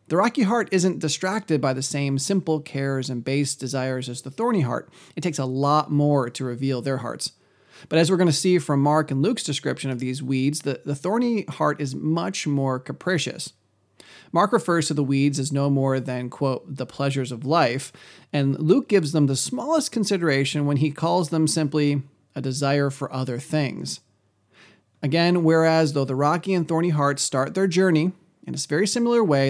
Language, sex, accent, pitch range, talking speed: English, male, American, 135-175 Hz, 195 wpm